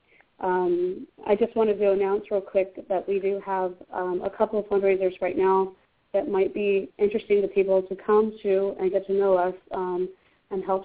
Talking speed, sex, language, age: 200 wpm, female, English, 20-39